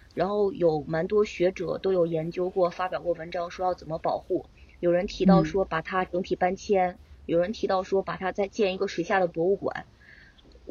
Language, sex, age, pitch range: Chinese, female, 20-39, 195-255 Hz